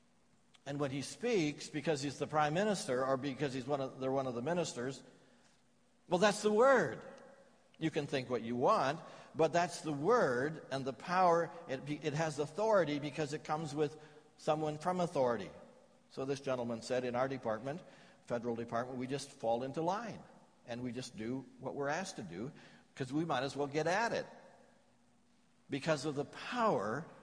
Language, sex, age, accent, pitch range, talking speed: English, male, 60-79, American, 125-170 Hz, 180 wpm